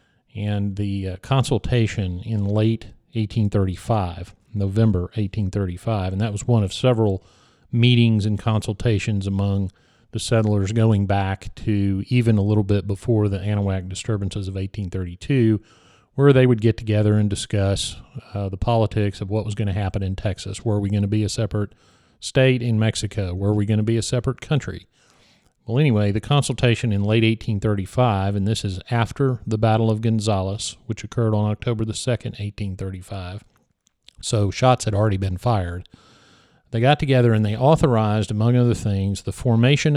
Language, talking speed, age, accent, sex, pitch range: English, 165 wpm, 40-59, American, male, 100-115 Hz